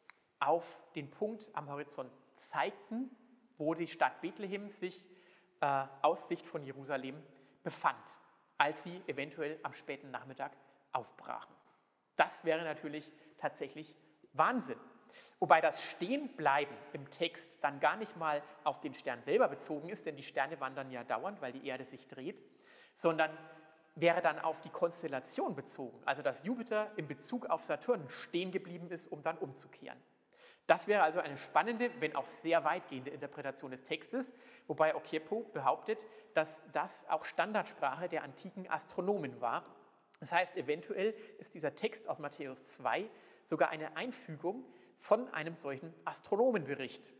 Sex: male